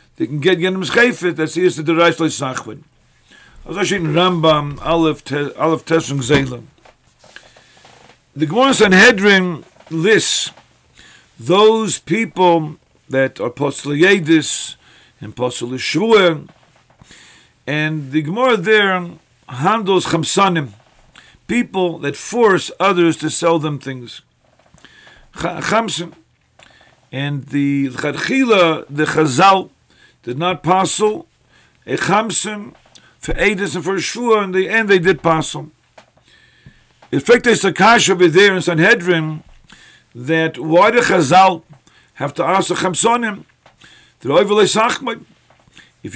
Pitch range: 150-195 Hz